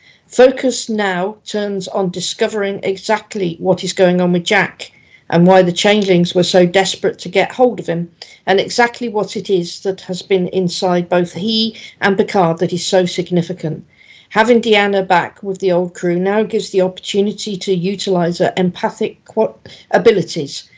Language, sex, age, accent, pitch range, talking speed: English, female, 50-69, British, 180-210 Hz, 165 wpm